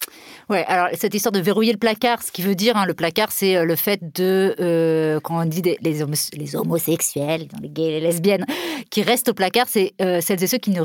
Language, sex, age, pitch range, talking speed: French, female, 30-49, 170-240 Hz, 245 wpm